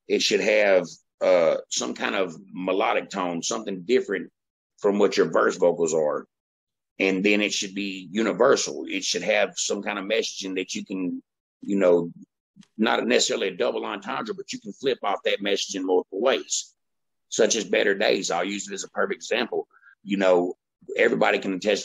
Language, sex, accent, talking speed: English, male, American, 180 wpm